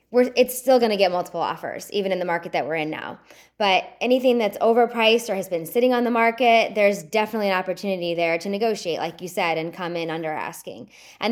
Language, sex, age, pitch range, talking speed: English, female, 20-39, 180-235 Hz, 225 wpm